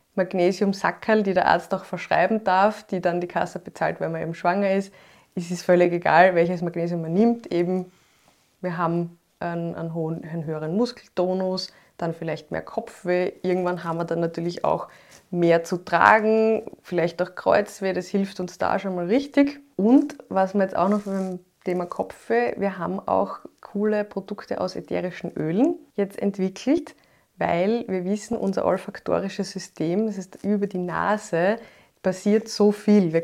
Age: 20-39